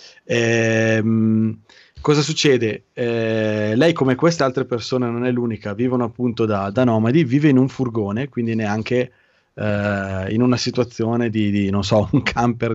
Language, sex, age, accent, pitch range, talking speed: Italian, male, 20-39, native, 105-125 Hz, 155 wpm